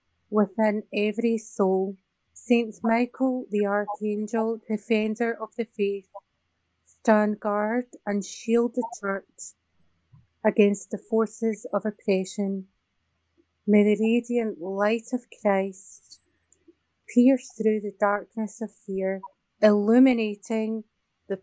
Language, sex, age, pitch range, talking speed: English, female, 30-49, 200-230 Hz, 100 wpm